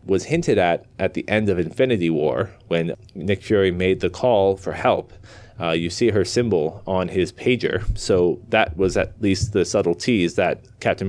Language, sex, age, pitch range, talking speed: English, male, 30-49, 95-120 Hz, 190 wpm